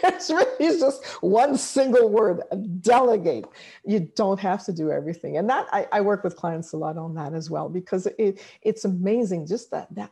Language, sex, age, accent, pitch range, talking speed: English, female, 50-69, American, 165-215 Hz, 195 wpm